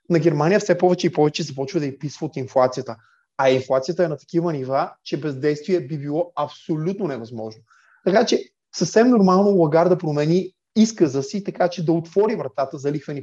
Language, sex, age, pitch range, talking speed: Bulgarian, male, 20-39, 145-185 Hz, 180 wpm